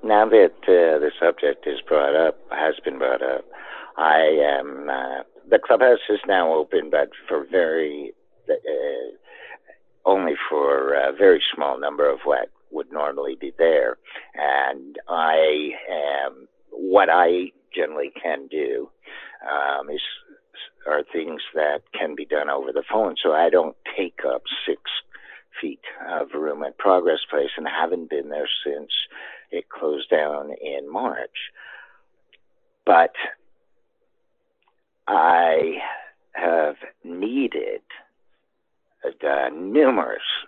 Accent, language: American, English